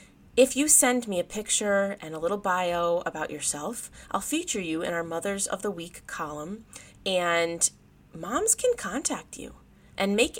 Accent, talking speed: American, 165 wpm